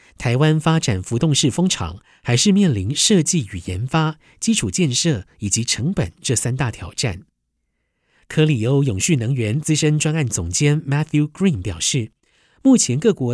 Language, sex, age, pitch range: Chinese, male, 50-69, 115-155 Hz